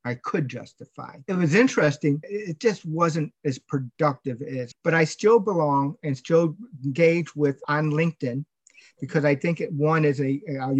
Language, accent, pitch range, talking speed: English, American, 140-165 Hz, 165 wpm